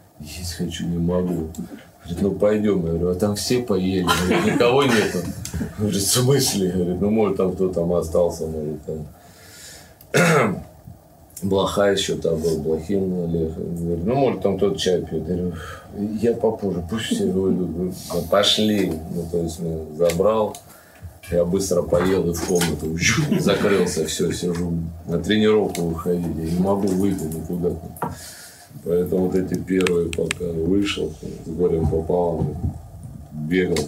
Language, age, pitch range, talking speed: Russian, 40-59, 80-95 Hz, 145 wpm